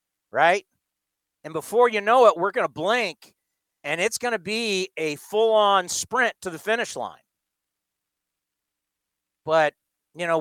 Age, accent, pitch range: 40-59, American, 155-215 Hz